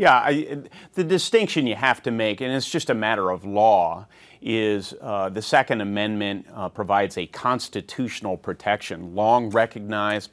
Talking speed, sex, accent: 150 wpm, male, American